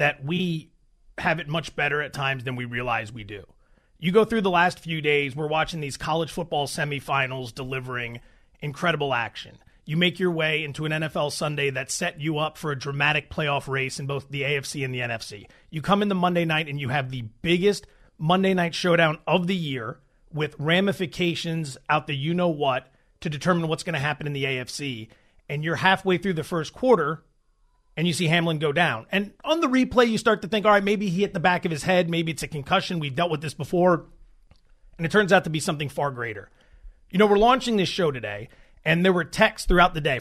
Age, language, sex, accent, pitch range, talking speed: 30-49, English, male, American, 145-185 Hz, 220 wpm